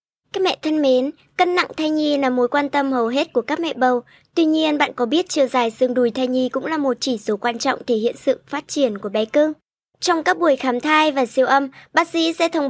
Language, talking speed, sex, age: Vietnamese, 265 wpm, male, 20-39